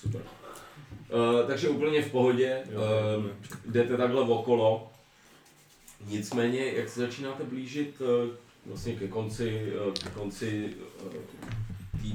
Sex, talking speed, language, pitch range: male, 115 wpm, Czech, 110-145 Hz